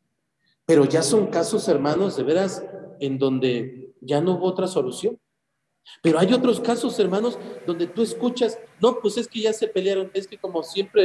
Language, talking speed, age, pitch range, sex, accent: Spanish, 180 wpm, 40-59, 170-245 Hz, male, Mexican